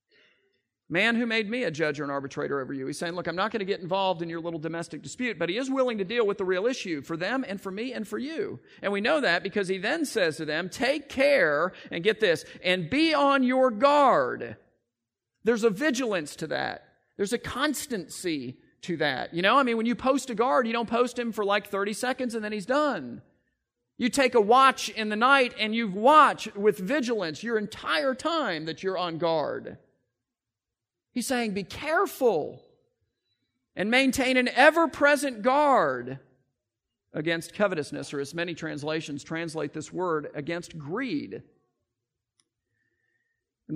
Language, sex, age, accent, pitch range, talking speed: English, male, 40-59, American, 155-255 Hz, 185 wpm